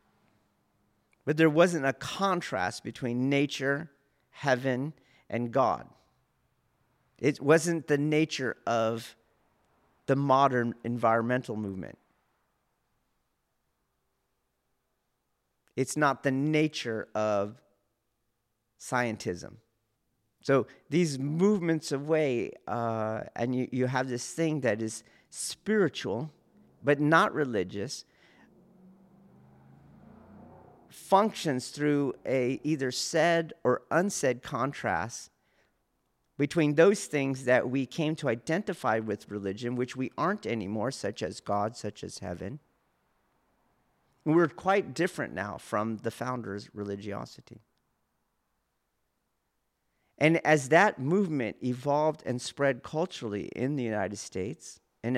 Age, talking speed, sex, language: 40-59, 100 wpm, male, English